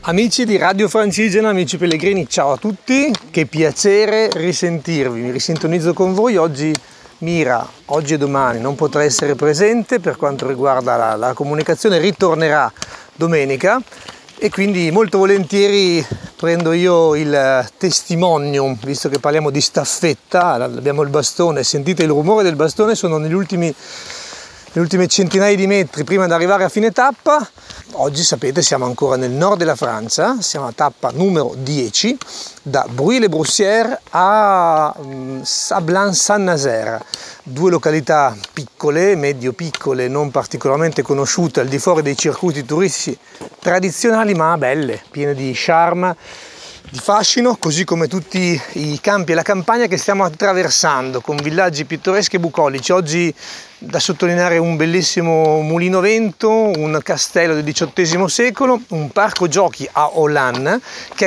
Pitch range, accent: 150-200 Hz, native